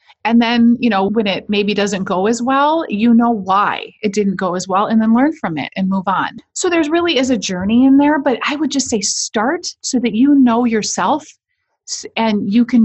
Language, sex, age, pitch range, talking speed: English, female, 30-49, 200-270 Hz, 230 wpm